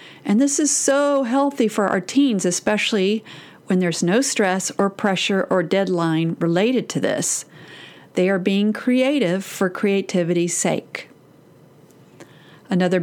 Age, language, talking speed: 40-59, English, 130 wpm